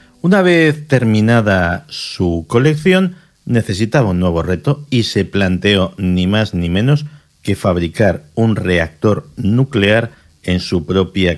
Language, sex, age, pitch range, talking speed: Spanish, male, 50-69, 90-120 Hz, 125 wpm